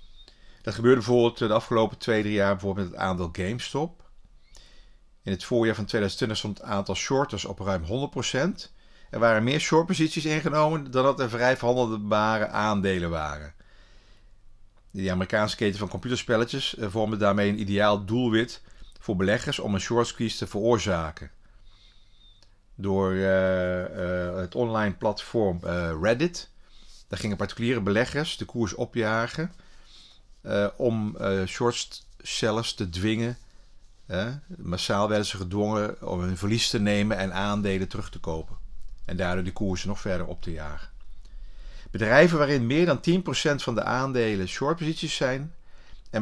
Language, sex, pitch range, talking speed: Dutch, male, 95-120 Hz, 145 wpm